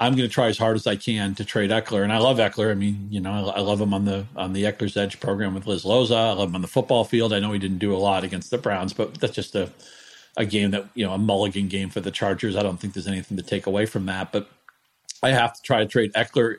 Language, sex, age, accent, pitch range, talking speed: English, male, 40-59, American, 100-125 Hz, 305 wpm